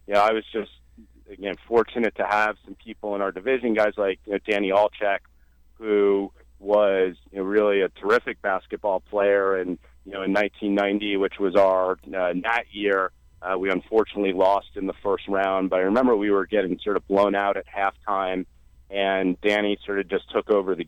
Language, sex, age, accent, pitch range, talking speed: English, male, 30-49, American, 90-105 Hz, 200 wpm